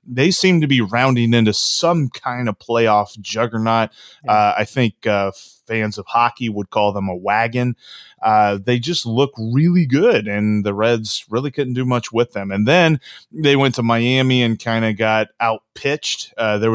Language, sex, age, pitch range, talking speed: English, male, 30-49, 110-135 Hz, 180 wpm